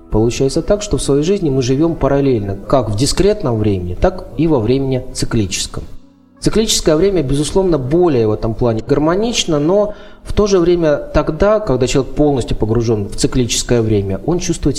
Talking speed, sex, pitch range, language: 165 wpm, male, 115-150 Hz, Russian